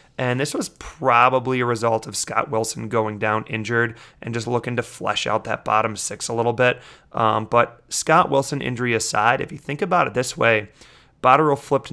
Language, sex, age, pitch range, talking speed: English, male, 30-49, 115-135 Hz, 195 wpm